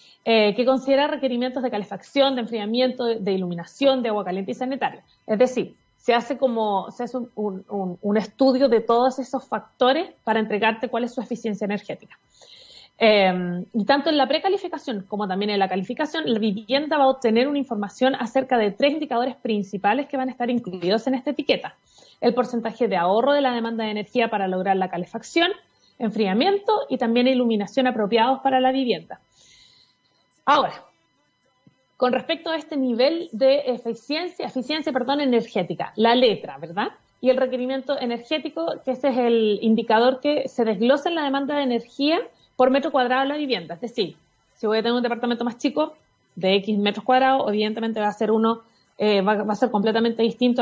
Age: 30-49